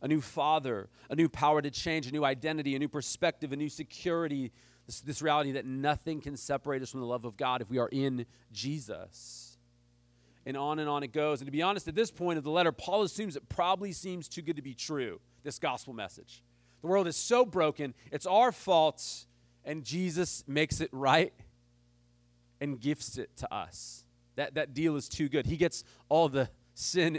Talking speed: 205 wpm